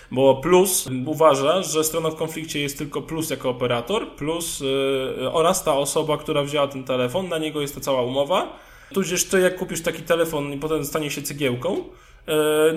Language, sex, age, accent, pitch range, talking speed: Polish, male, 10-29, native, 140-165 Hz, 185 wpm